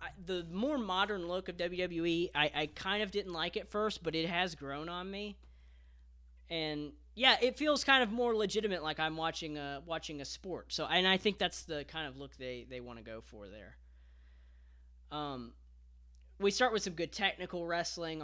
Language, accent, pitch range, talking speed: English, American, 120-170 Hz, 195 wpm